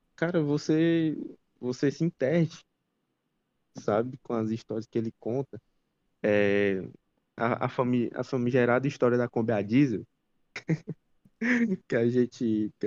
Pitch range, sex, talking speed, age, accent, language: 105-135 Hz, male, 115 wpm, 20-39, Brazilian, Portuguese